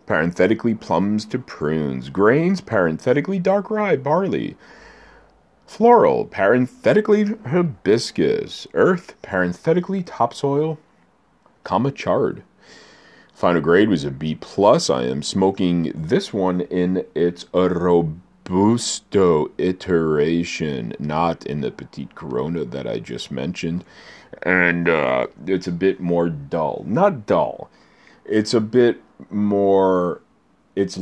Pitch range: 80-105 Hz